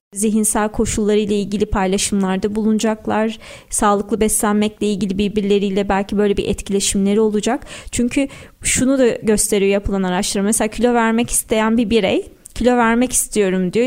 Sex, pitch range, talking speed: female, 205-245 Hz, 135 wpm